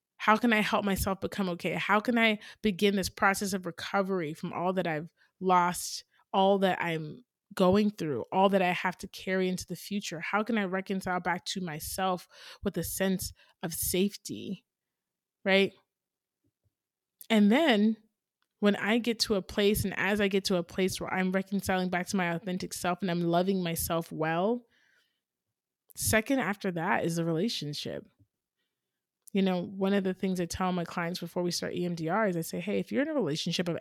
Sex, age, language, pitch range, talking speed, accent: male, 20-39, English, 175-210 Hz, 185 wpm, American